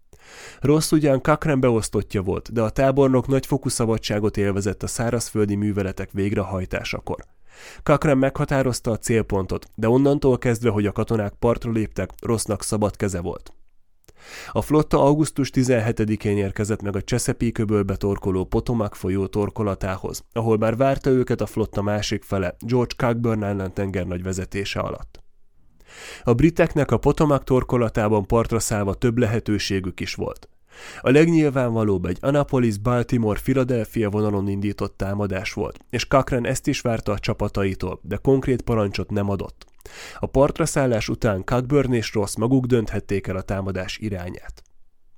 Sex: male